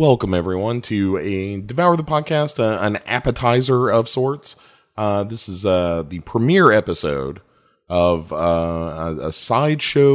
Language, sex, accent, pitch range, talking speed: English, male, American, 95-140 Hz, 140 wpm